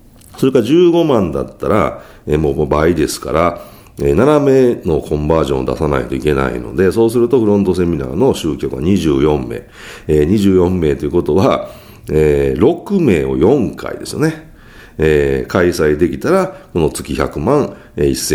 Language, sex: Japanese, male